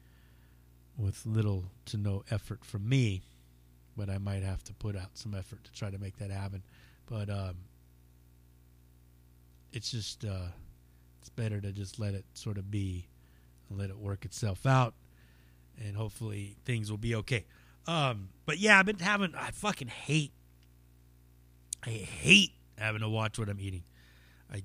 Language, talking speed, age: English, 160 wpm, 30-49